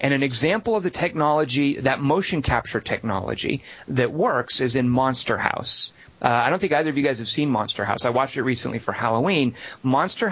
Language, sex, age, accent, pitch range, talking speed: English, male, 30-49, American, 125-160 Hz, 205 wpm